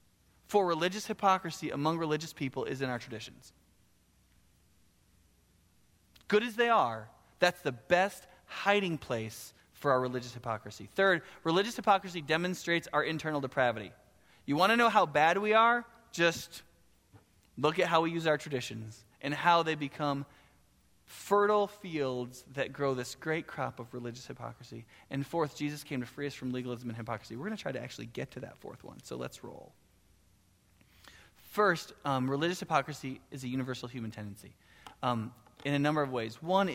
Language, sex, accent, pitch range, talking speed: English, male, American, 120-160 Hz, 165 wpm